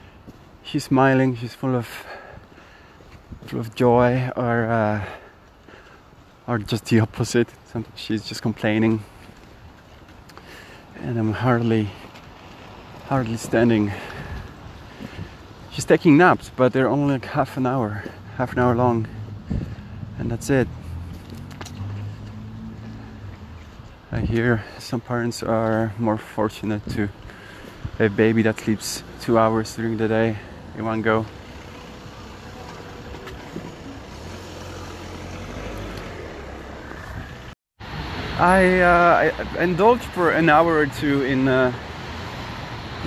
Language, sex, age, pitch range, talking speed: English, male, 20-39, 105-125 Hz, 95 wpm